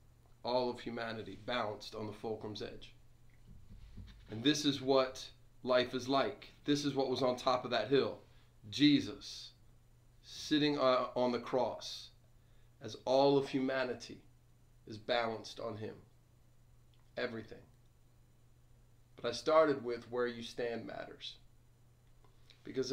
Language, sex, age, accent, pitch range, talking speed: English, male, 30-49, American, 115-125 Hz, 125 wpm